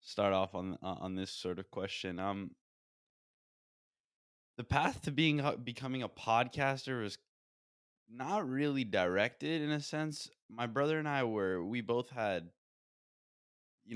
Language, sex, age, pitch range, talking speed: English, male, 20-39, 85-100 Hz, 140 wpm